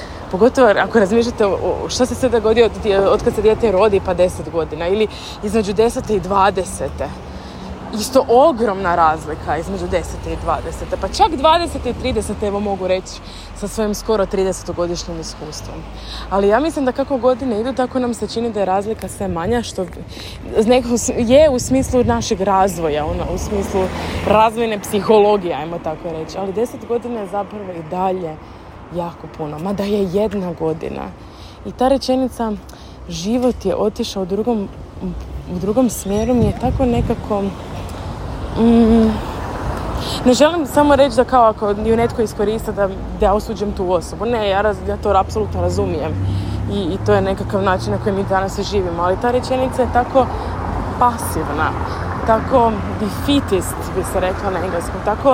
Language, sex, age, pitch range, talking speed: Croatian, female, 20-39, 180-235 Hz, 155 wpm